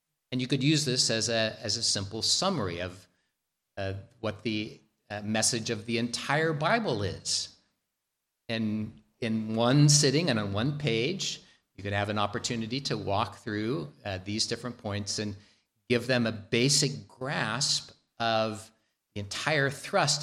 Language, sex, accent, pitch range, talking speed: English, male, American, 105-130 Hz, 150 wpm